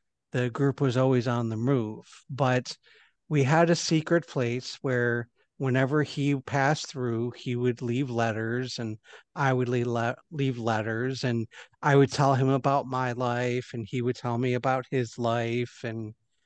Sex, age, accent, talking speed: male, 50-69, American, 160 wpm